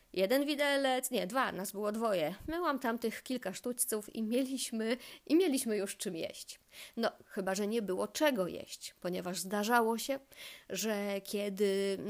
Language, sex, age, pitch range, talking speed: Polish, female, 30-49, 210-280 Hz, 150 wpm